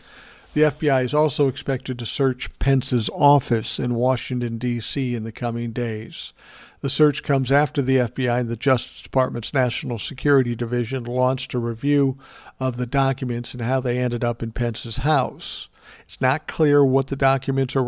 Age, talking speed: 50-69, 170 wpm